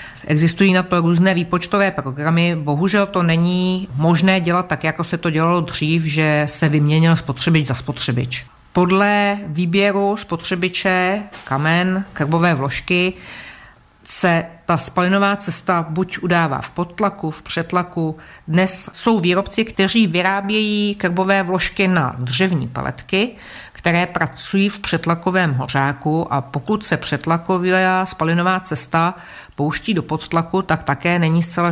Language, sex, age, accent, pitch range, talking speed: Czech, female, 50-69, native, 150-185 Hz, 125 wpm